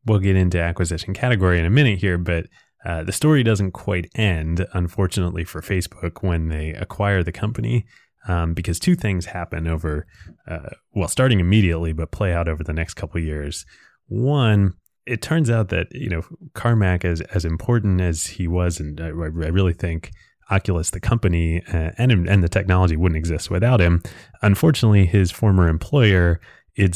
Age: 20-39